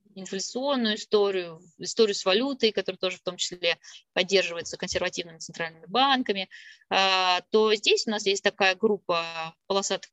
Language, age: Russian, 20-39